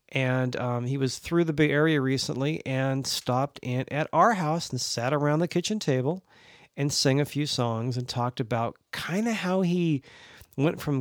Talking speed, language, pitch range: 190 wpm, English, 120-145 Hz